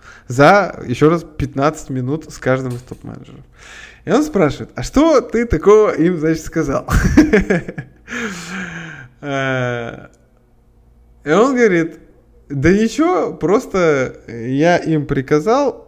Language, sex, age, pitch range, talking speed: Russian, male, 20-39, 125-175 Hz, 105 wpm